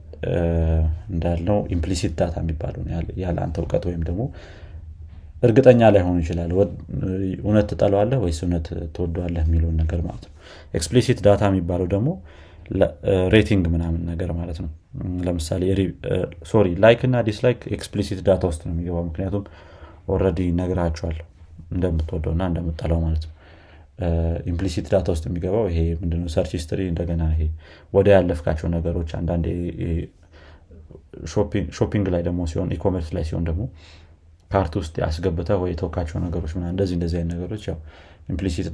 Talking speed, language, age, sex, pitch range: 125 wpm, Amharic, 30-49, male, 85-95 Hz